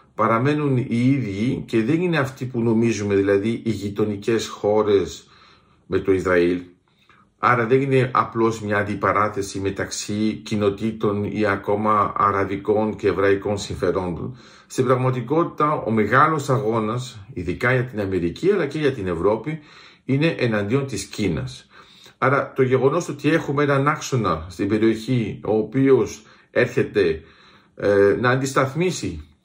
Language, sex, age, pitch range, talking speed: Greek, male, 50-69, 105-140 Hz, 130 wpm